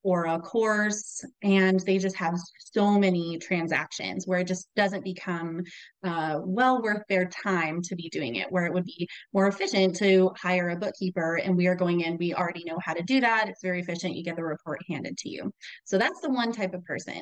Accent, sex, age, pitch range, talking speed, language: American, female, 20-39, 180-225 Hz, 220 wpm, English